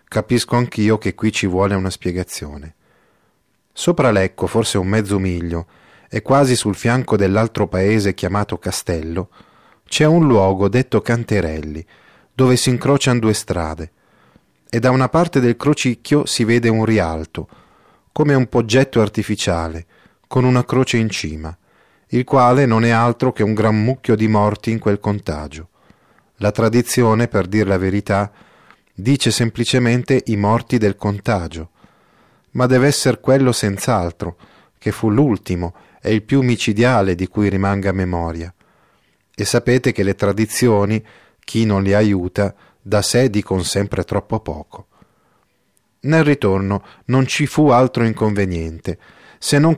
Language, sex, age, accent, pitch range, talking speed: Italian, male, 30-49, native, 95-120 Hz, 140 wpm